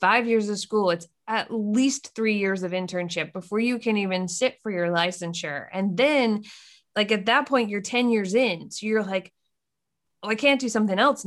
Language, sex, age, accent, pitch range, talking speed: English, female, 20-39, American, 185-245 Hz, 200 wpm